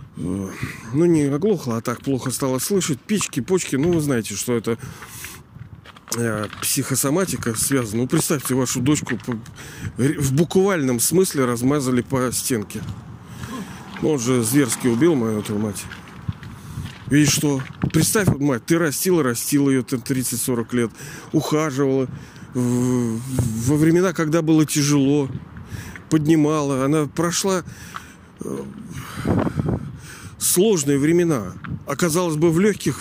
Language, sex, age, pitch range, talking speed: Russian, male, 40-59, 130-165 Hz, 115 wpm